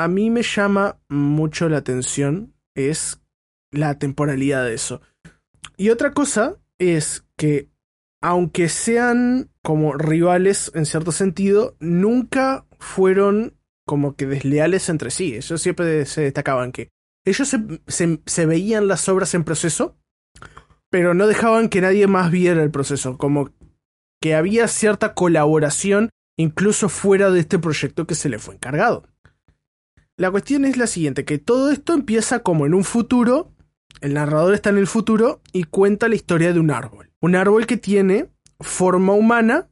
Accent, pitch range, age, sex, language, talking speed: Argentinian, 150-210 Hz, 20-39, male, Spanish, 150 wpm